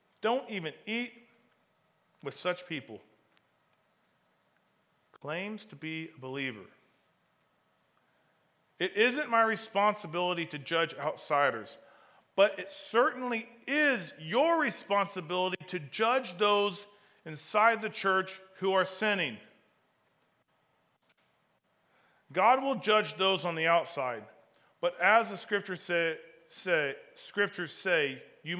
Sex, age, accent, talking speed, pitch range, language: male, 40-59, American, 95 wpm, 155-220 Hz, English